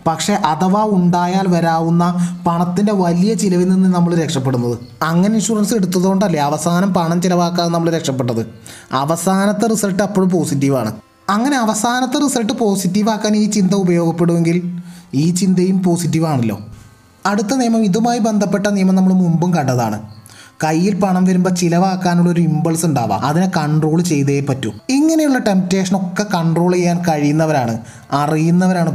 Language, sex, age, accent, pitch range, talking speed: Malayalam, male, 20-39, native, 140-190 Hz, 115 wpm